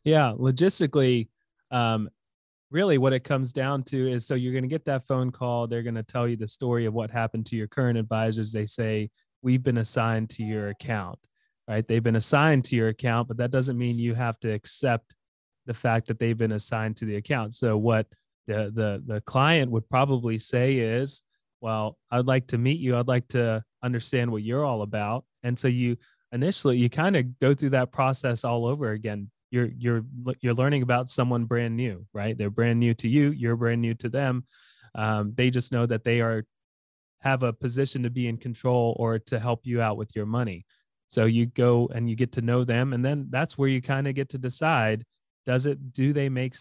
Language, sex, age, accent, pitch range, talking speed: English, male, 30-49, American, 115-130 Hz, 215 wpm